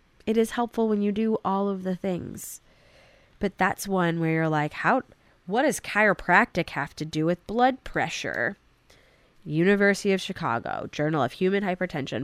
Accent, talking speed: American, 160 wpm